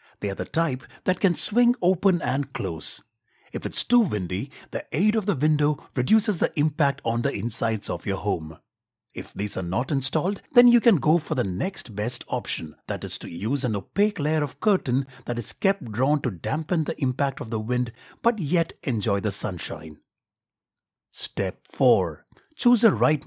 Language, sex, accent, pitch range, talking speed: English, male, Indian, 110-185 Hz, 185 wpm